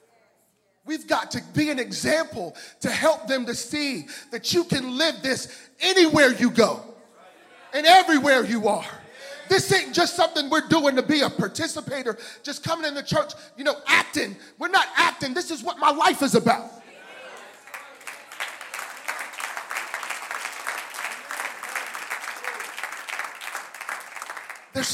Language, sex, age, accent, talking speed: English, male, 40-59, American, 125 wpm